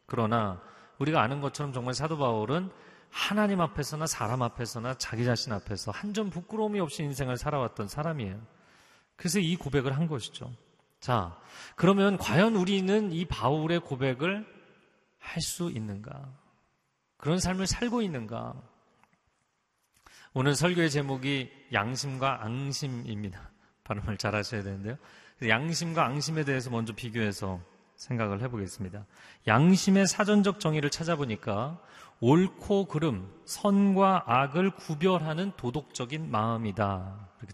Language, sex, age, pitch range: Korean, male, 40-59, 115-175 Hz